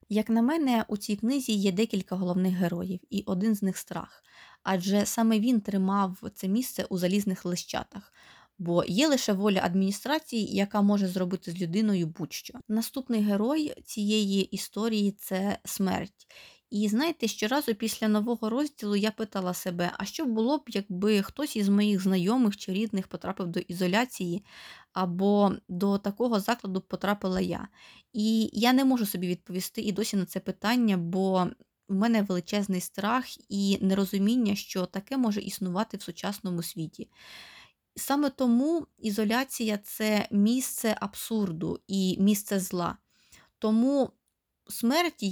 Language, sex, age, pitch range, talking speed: Ukrainian, female, 20-39, 190-225 Hz, 145 wpm